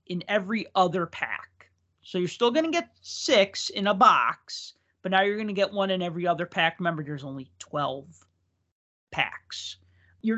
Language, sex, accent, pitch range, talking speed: English, male, American, 160-215 Hz, 180 wpm